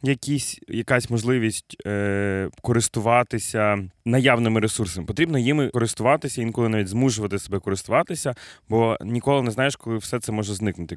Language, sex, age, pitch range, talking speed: Ukrainian, male, 20-39, 105-130 Hz, 130 wpm